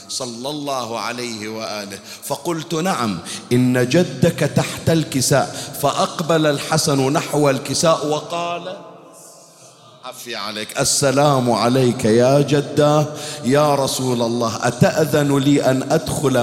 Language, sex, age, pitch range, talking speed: Arabic, male, 50-69, 115-155 Hz, 100 wpm